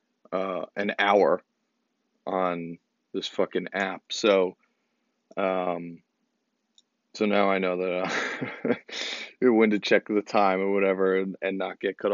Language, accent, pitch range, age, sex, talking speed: English, American, 95-120 Hz, 40-59, male, 135 wpm